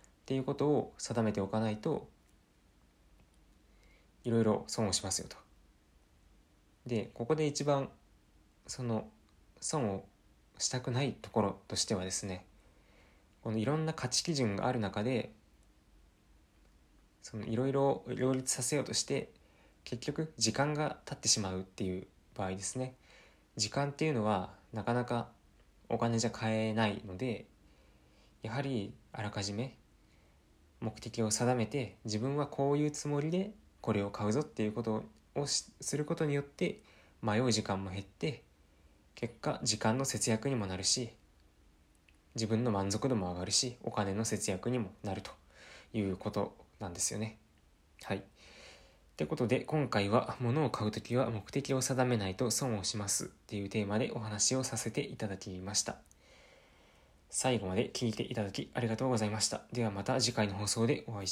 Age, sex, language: 20-39, male, Japanese